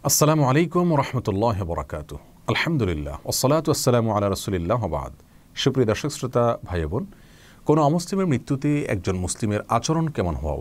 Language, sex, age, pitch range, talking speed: Bengali, male, 40-59, 90-130 Hz, 100 wpm